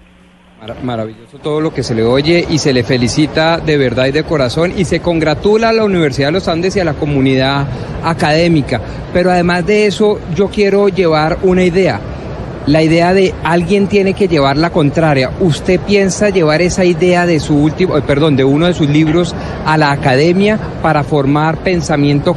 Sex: male